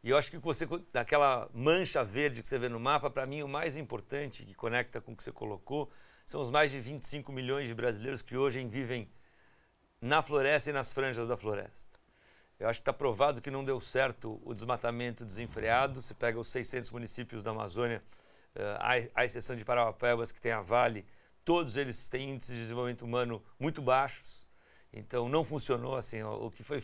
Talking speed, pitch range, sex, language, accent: 195 wpm, 120-140 Hz, male, Portuguese, Brazilian